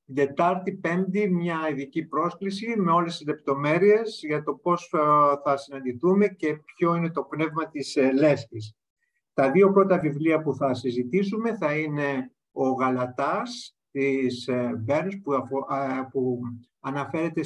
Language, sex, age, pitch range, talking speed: Greek, male, 50-69, 135-175 Hz, 145 wpm